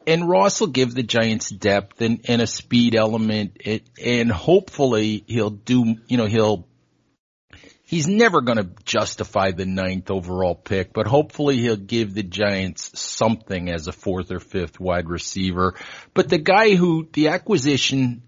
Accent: American